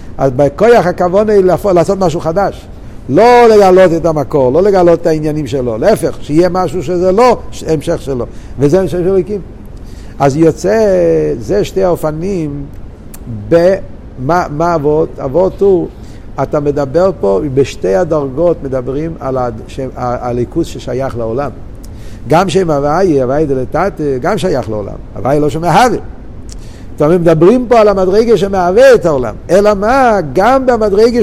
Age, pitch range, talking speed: 50-69, 140-205 Hz, 135 wpm